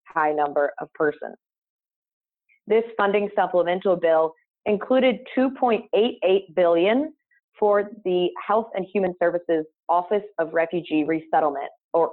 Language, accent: English, American